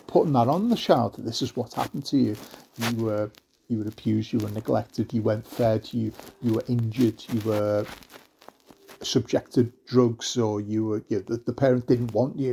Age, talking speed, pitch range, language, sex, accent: 40-59, 205 wpm, 115-130 Hz, English, male, British